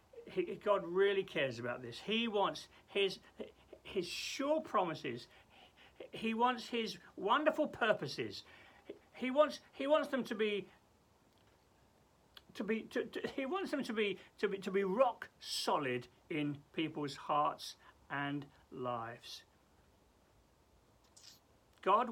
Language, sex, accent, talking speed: English, male, British, 120 wpm